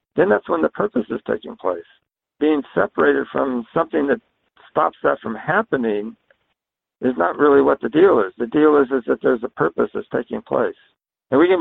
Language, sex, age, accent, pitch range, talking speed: English, male, 60-79, American, 130-195 Hz, 195 wpm